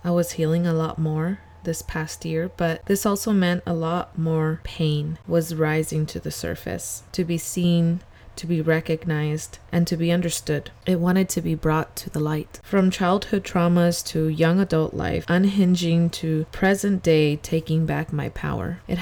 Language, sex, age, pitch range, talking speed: English, female, 20-39, 160-180 Hz, 175 wpm